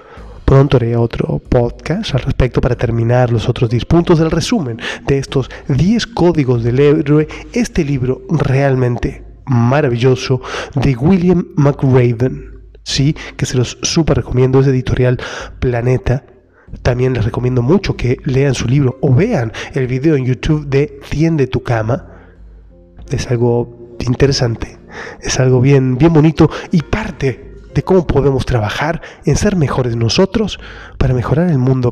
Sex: male